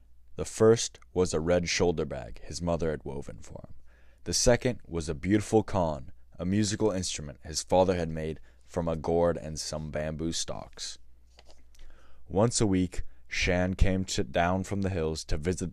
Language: English